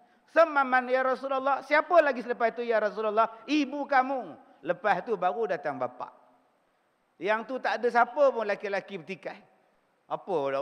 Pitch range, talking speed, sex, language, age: 170-235 Hz, 145 wpm, male, Malay, 50-69